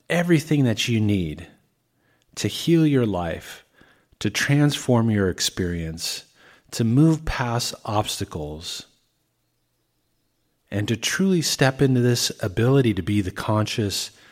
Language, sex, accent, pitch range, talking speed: English, male, American, 95-130 Hz, 115 wpm